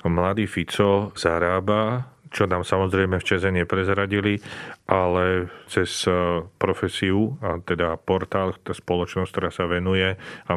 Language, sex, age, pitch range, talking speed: Slovak, male, 40-59, 85-95 Hz, 120 wpm